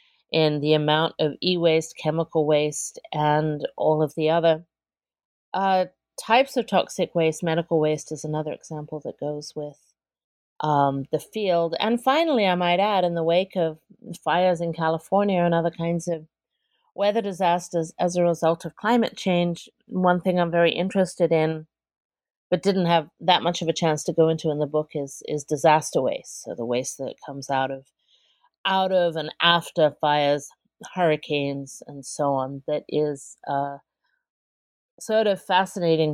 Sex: female